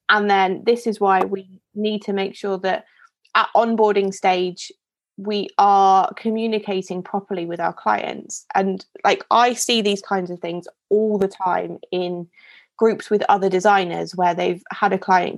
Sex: female